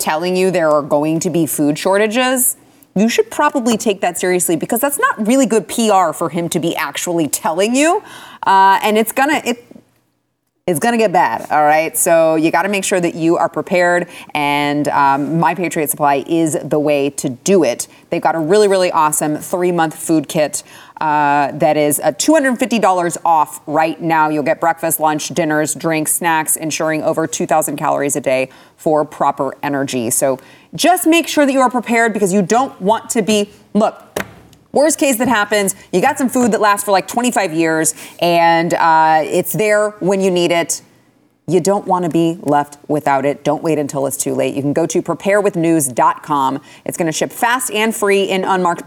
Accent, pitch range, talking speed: American, 155-210 Hz, 195 wpm